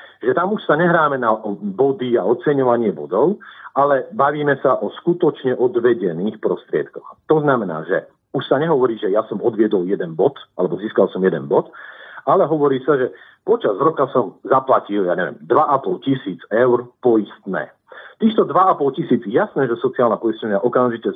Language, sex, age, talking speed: Slovak, male, 50-69, 160 wpm